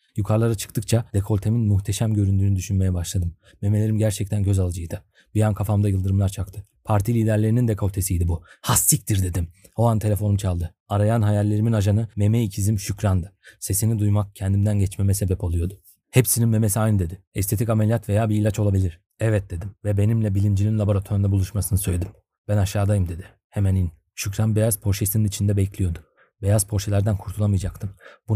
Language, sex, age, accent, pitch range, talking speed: Turkish, male, 40-59, native, 95-110 Hz, 150 wpm